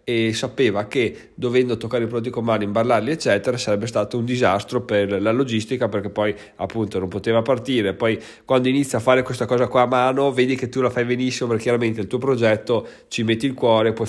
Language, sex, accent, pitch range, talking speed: Italian, male, native, 110-135 Hz, 215 wpm